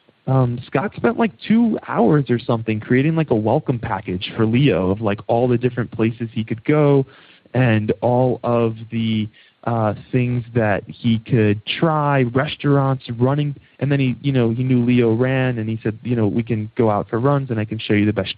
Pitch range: 110-135 Hz